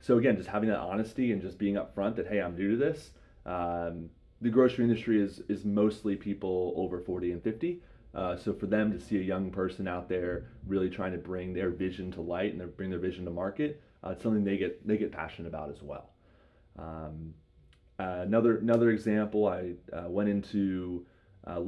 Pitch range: 90-115 Hz